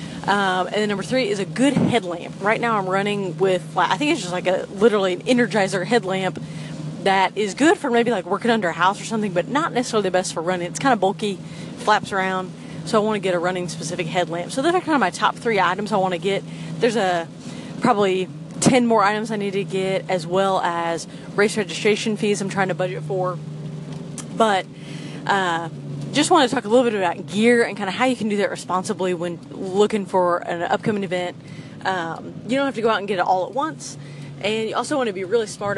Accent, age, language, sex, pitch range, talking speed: American, 30-49, English, female, 175-215 Hz, 230 wpm